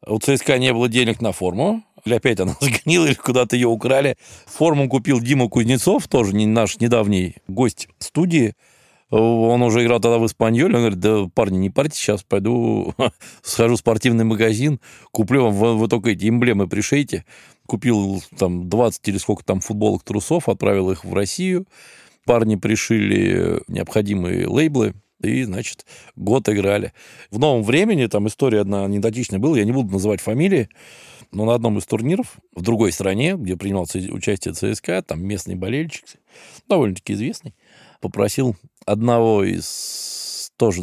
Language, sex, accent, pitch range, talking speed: Russian, male, native, 100-120 Hz, 150 wpm